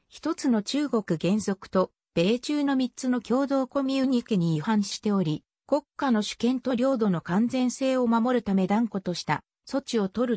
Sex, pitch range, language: female, 175-265 Hz, Japanese